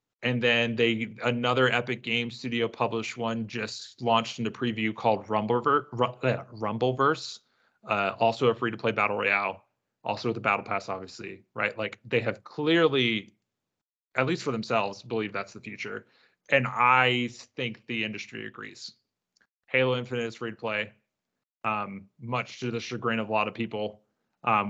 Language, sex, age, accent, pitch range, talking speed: English, male, 30-49, American, 105-125 Hz, 155 wpm